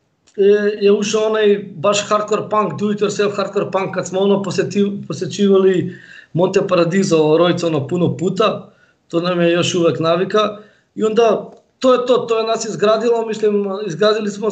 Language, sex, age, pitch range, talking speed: Croatian, male, 20-39, 180-210 Hz, 135 wpm